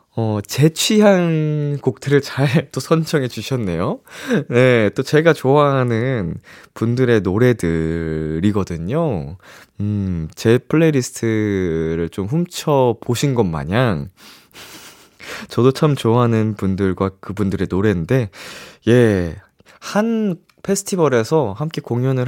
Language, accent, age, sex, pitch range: Korean, native, 20-39, male, 100-145 Hz